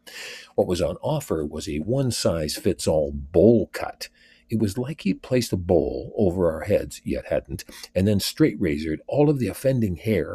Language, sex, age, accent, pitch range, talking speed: English, male, 60-79, American, 75-120 Hz, 170 wpm